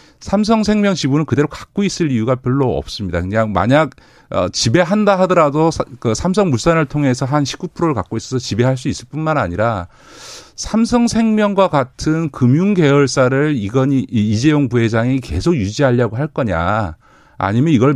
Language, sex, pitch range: Korean, male, 110-155 Hz